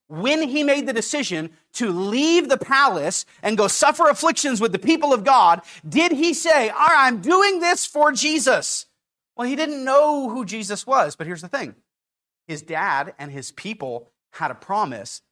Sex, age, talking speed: male, 30-49, 175 wpm